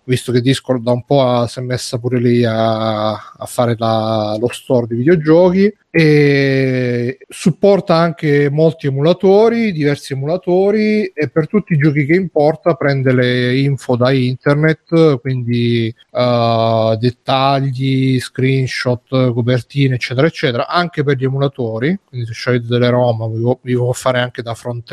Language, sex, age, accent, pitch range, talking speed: Italian, male, 30-49, native, 125-150 Hz, 145 wpm